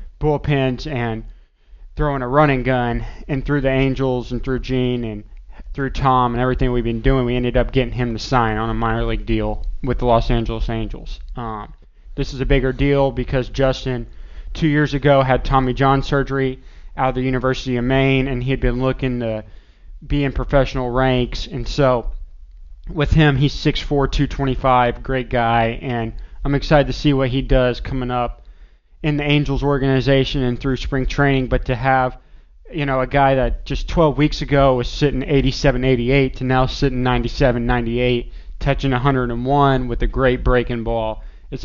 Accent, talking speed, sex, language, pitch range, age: American, 175 wpm, male, English, 120-135 Hz, 20-39